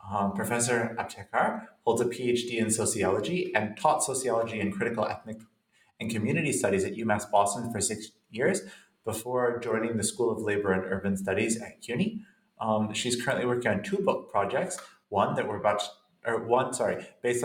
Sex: male